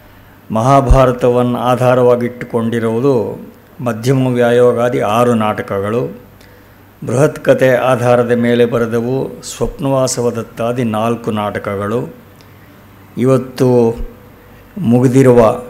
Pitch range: 115-135 Hz